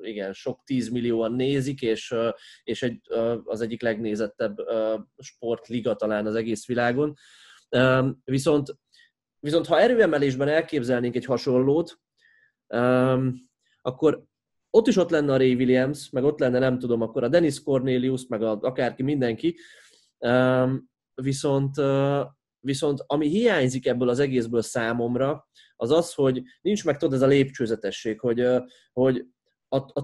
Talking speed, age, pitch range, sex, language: 135 wpm, 20-39, 120-150 Hz, male, Hungarian